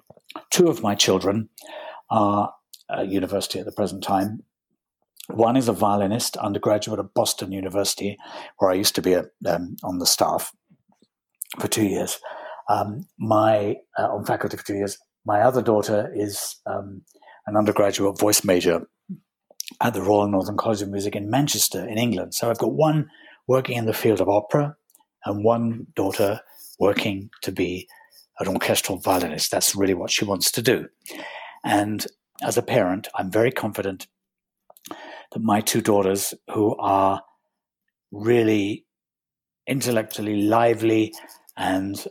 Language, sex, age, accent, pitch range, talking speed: English, male, 60-79, British, 100-120 Hz, 145 wpm